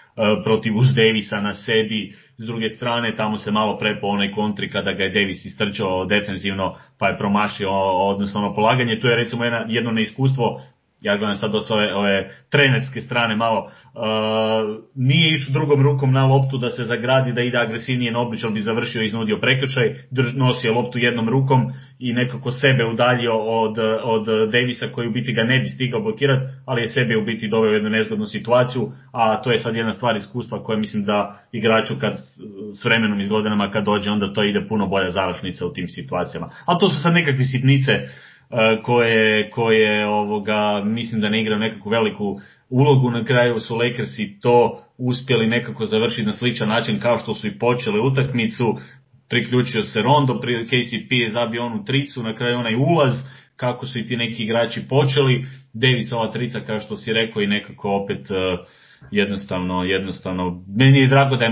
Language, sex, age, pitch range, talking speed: Croatian, male, 30-49, 105-125 Hz, 180 wpm